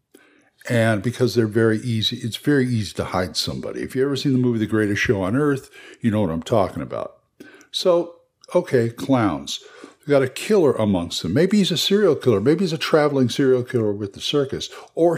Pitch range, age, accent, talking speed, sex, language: 110-140 Hz, 50-69, American, 205 wpm, male, English